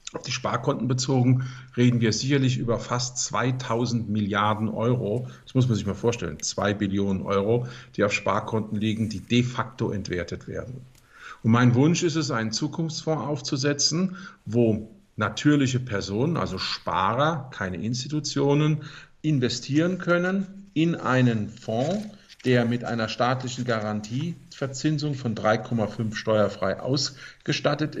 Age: 50-69